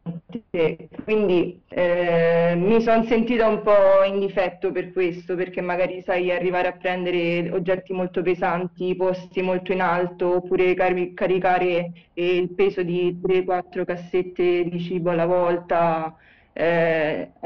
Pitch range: 175-195 Hz